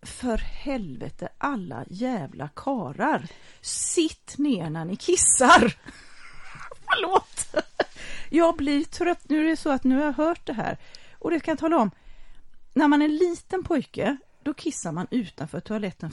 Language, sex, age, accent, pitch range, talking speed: English, female, 30-49, Swedish, 220-305 Hz, 165 wpm